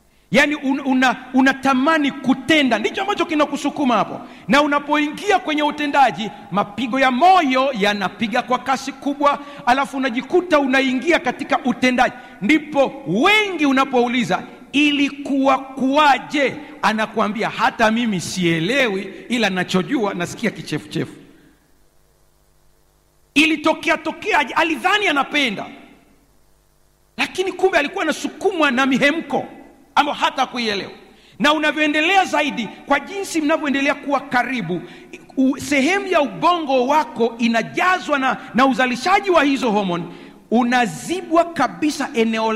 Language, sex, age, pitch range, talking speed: Swahili, male, 50-69, 225-305 Hz, 105 wpm